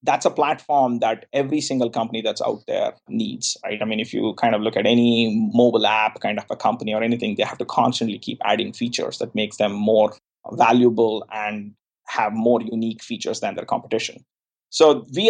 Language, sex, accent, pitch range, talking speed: English, male, Indian, 115-130 Hz, 200 wpm